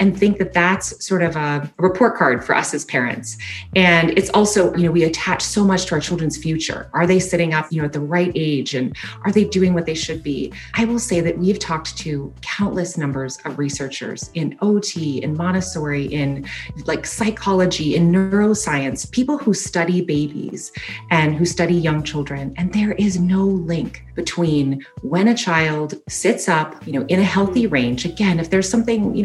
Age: 30-49